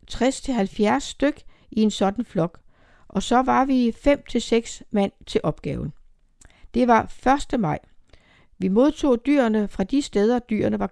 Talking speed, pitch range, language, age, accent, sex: 150 wpm, 190-255 Hz, Danish, 60-79, native, female